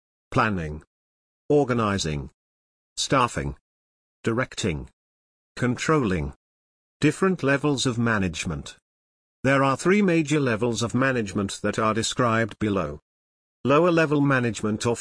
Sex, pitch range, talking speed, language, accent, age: male, 95-135 Hz, 95 wpm, English, British, 50-69